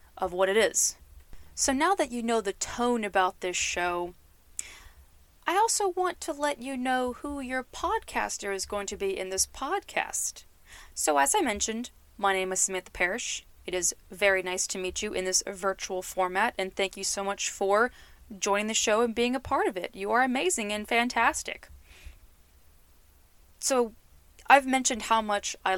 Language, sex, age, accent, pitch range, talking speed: English, female, 20-39, American, 175-220 Hz, 180 wpm